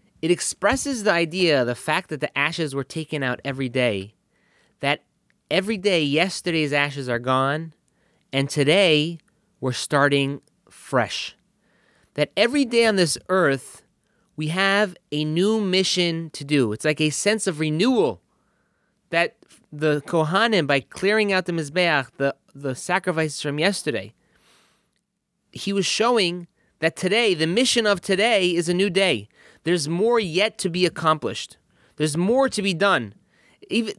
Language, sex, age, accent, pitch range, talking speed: English, male, 30-49, American, 145-195 Hz, 145 wpm